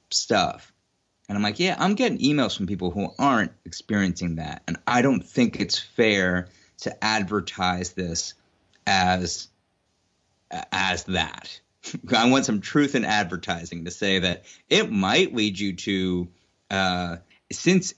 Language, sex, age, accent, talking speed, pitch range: English, male, 30-49, American, 140 wpm, 90-110 Hz